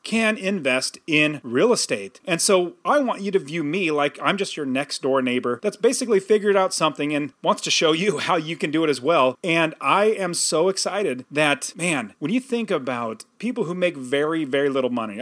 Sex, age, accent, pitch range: male, 30-49, American, 145-205 Hz